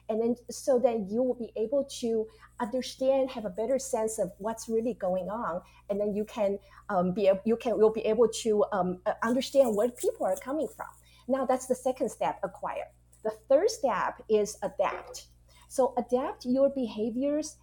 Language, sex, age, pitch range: English, female, 40-59, 200-270 Hz